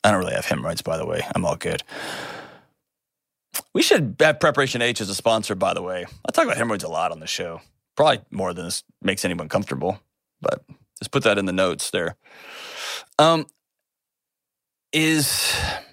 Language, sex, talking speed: English, male, 180 wpm